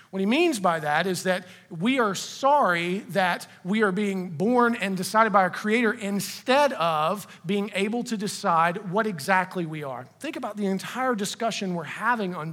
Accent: American